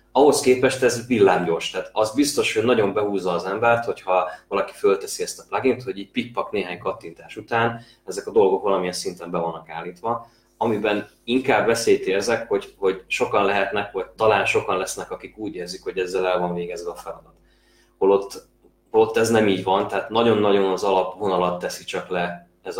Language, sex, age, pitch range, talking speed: Hungarian, male, 20-39, 95-155 Hz, 180 wpm